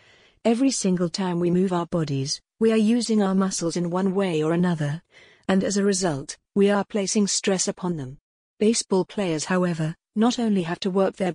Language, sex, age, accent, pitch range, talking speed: English, female, 40-59, British, 170-200 Hz, 190 wpm